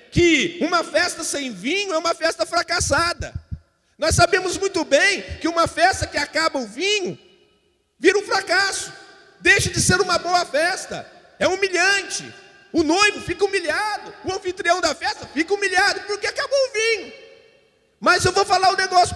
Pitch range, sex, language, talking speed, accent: 325-400 Hz, male, Portuguese, 160 wpm, Brazilian